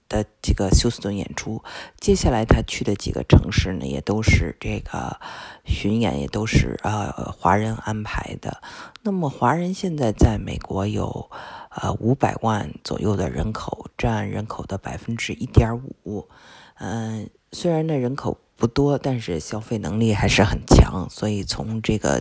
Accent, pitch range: native, 100-115 Hz